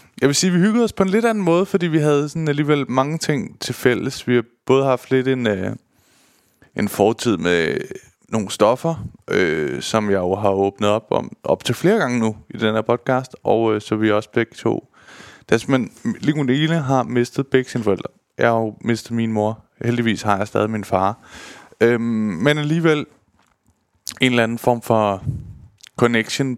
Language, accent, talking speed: Danish, native, 190 wpm